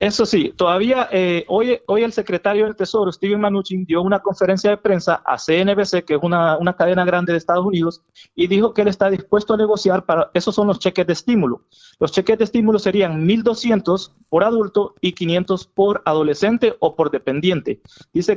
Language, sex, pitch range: Spanish, male, 170-210 Hz